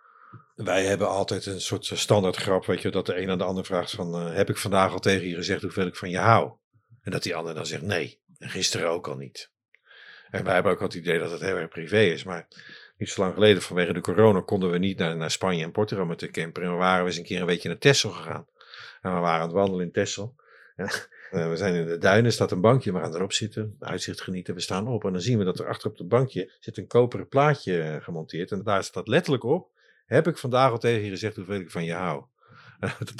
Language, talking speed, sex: Dutch, 255 wpm, male